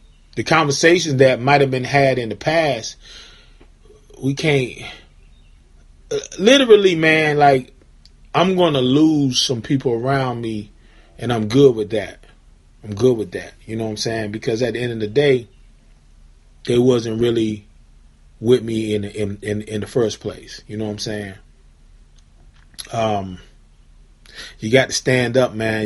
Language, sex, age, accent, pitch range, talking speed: English, male, 30-49, American, 100-130 Hz, 155 wpm